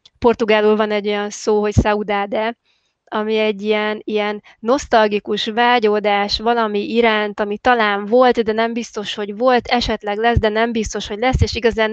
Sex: female